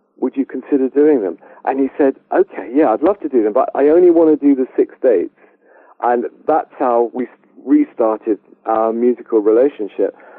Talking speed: 185 wpm